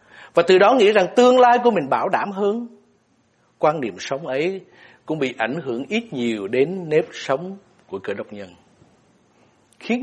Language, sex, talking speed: Vietnamese, male, 180 wpm